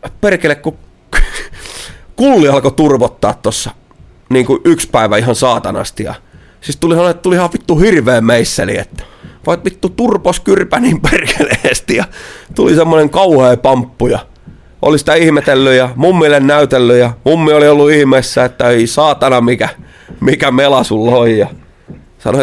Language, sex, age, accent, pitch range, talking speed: Finnish, male, 30-49, native, 110-145 Hz, 135 wpm